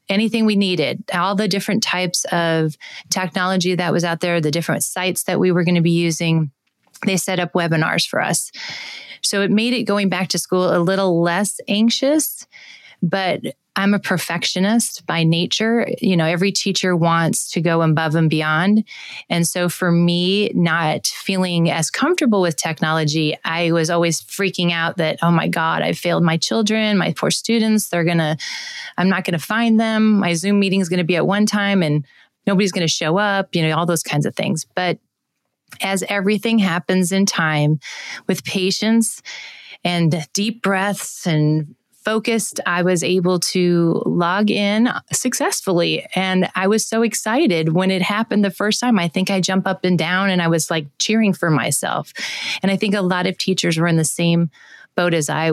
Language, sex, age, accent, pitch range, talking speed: English, female, 30-49, American, 165-200 Hz, 190 wpm